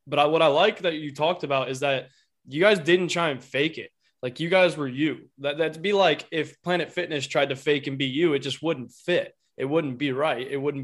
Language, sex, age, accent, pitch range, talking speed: English, male, 20-39, American, 135-160 Hz, 255 wpm